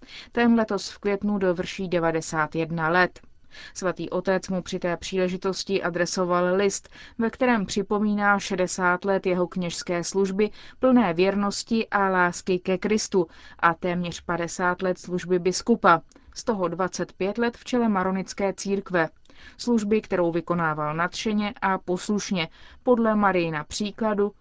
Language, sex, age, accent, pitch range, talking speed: Czech, female, 30-49, native, 175-205 Hz, 130 wpm